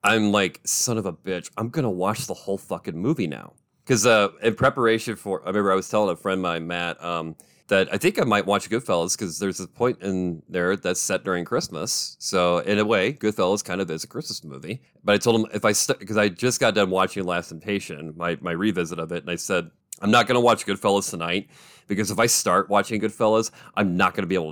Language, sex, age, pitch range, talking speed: English, male, 30-49, 85-110 Hz, 245 wpm